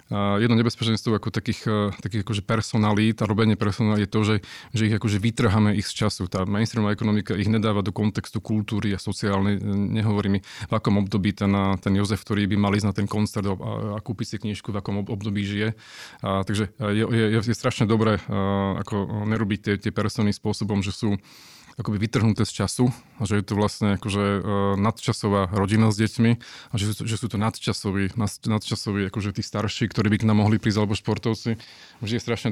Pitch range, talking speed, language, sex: 100-115 Hz, 190 wpm, Slovak, male